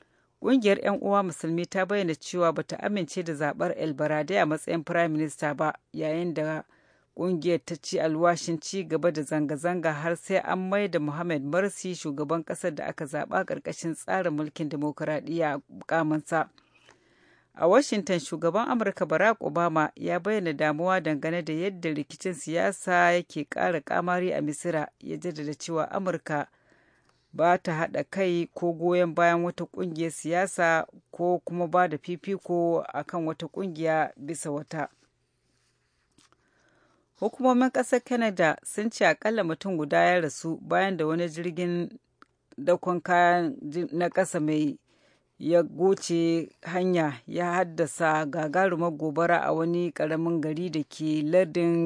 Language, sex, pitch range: English, female, 155-180 Hz